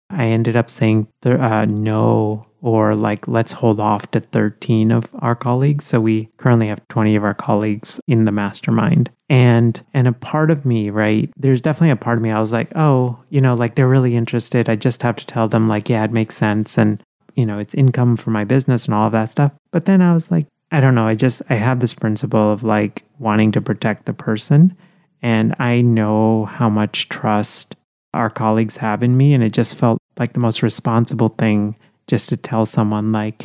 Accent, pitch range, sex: American, 110-130 Hz, male